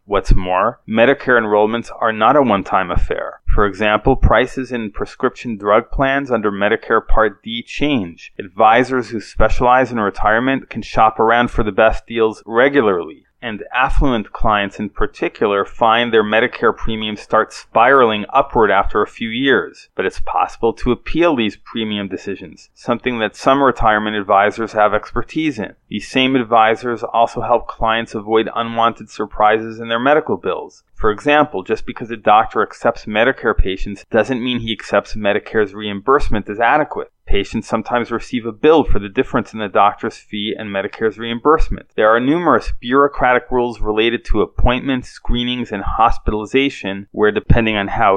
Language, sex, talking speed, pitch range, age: English, male, 155 wpm, 105-125 Hz, 30-49